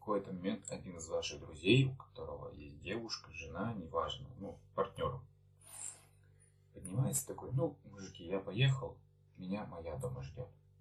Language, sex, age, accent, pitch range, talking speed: Russian, male, 20-39, native, 100-130 Hz, 140 wpm